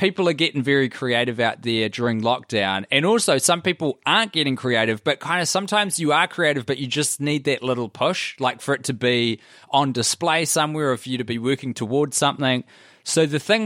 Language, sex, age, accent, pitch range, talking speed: English, male, 20-39, Australian, 115-150 Hz, 215 wpm